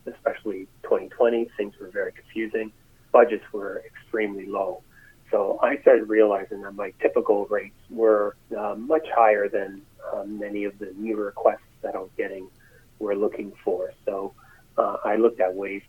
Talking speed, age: 160 wpm, 30-49